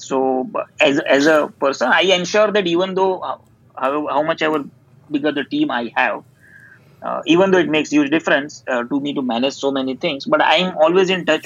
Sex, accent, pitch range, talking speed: male, native, 135-175 Hz, 215 wpm